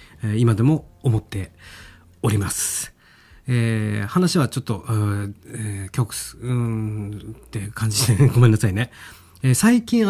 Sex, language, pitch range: male, Japanese, 110-150 Hz